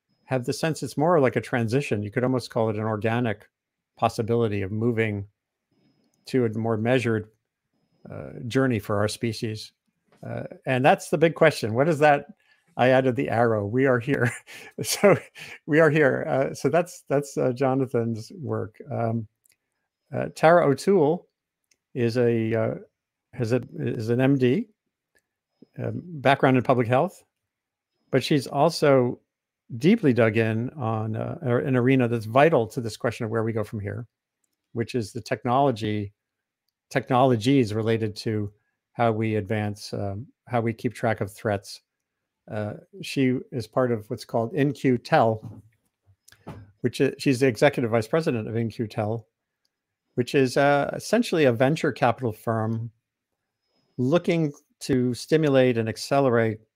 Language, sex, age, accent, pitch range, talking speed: English, male, 50-69, American, 110-135 Hz, 145 wpm